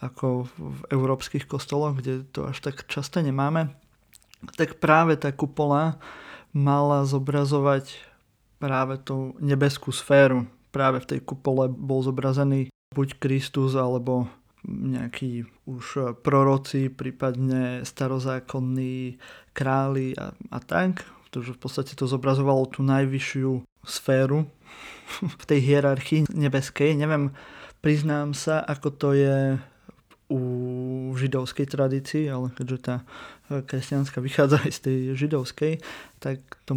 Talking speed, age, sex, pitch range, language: 115 wpm, 20-39, male, 130-145 Hz, Slovak